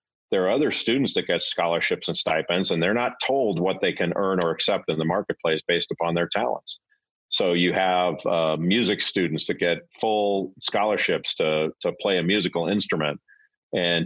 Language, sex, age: English, male, 40-59